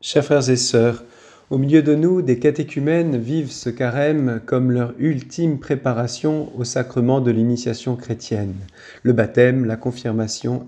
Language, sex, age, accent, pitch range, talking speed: French, male, 40-59, French, 115-150 Hz, 145 wpm